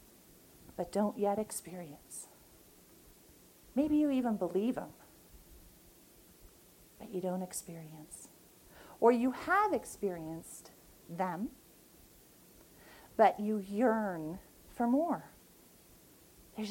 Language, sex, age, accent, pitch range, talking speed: English, female, 40-59, American, 175-250 Hz, 85 wpm